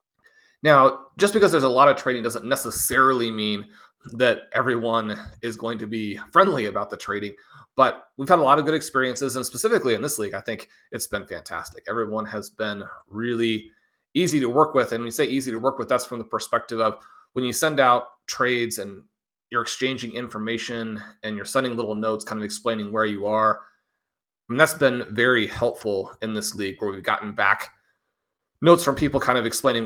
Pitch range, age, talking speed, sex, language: 110-130 Hz, 30-49, 195 wpm, male, English